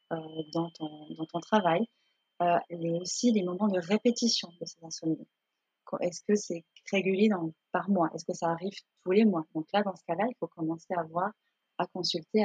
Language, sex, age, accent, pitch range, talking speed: French, female, 30-49, French, 165-205 Hz, 205 wpm